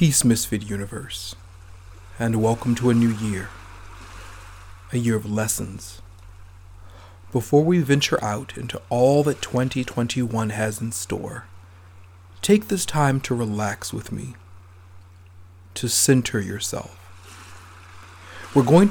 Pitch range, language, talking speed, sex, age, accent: 90-125 Hz, English, 115 wpm, male, 40-59, American